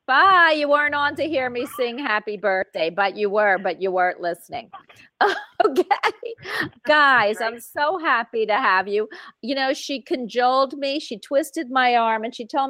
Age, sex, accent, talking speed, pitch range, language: 40-59, female, American, 175 wpm, 195-275 Hz, English